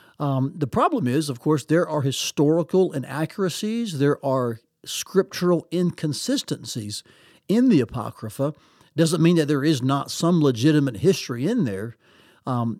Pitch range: 125-165 Hz